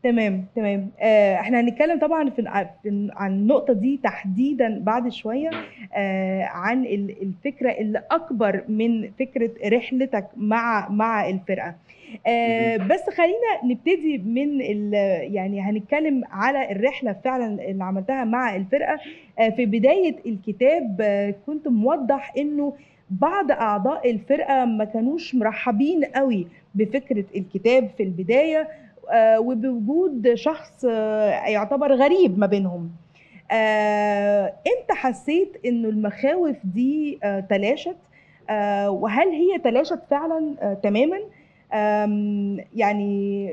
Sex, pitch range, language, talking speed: female, 210-275 Hz, Arabic, 100 wpm